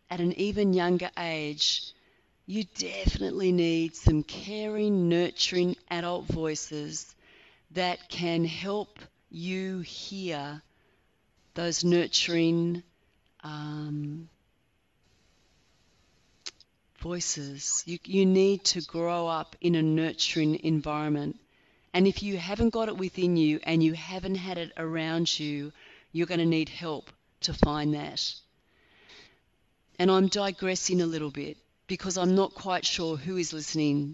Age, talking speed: 40-59, 120 wpm